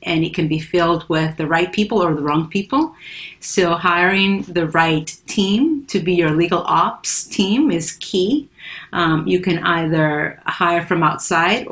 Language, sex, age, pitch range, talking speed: English, female, 40-59, 160-200 Hz, 170 wpm